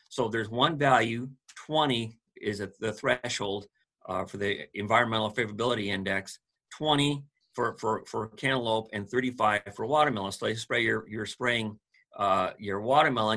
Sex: male